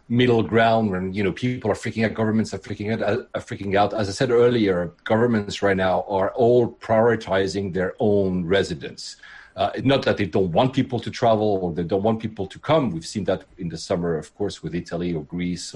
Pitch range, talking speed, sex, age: 95-120 Hz, 215 wpm, male, 40-59